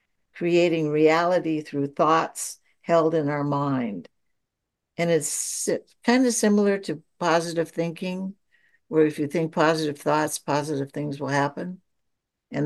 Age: 60-79